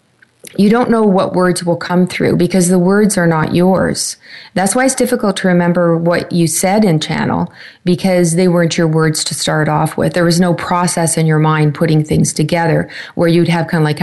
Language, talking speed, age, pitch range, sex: English, 215 wpm, 40-59, 160-185 Hz, female